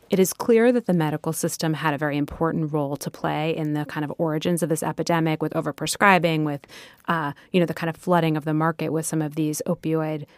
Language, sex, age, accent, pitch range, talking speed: English, female, 30-49, American, 155-185 Hz, 230 wpm